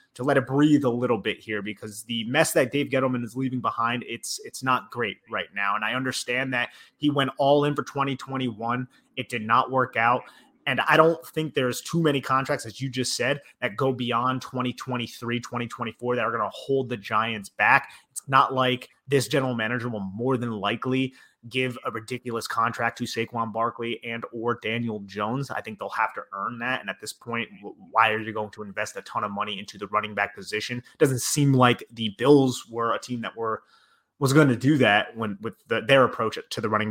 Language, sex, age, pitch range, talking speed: English, male, 30-49, 110-130 Hz, 215 wpm